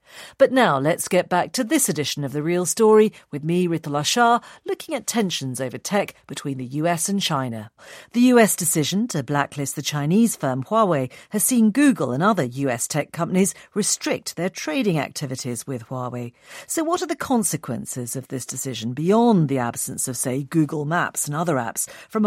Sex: female